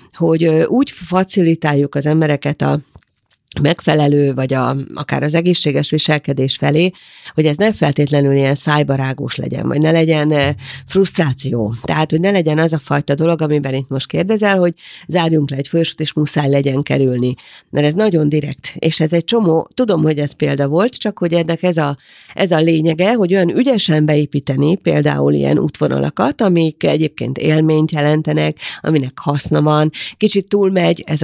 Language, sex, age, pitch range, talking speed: Hungarian, female, 40-59, 140-165 Hz, 160 wpm